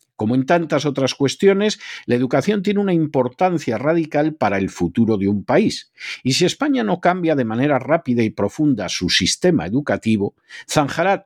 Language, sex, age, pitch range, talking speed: Spanish, male, 50-69, 115-160 Hz, 165 wpm